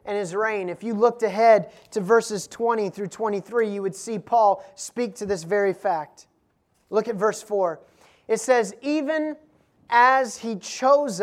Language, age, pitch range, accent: English, 30-49, 200-260 Hz, American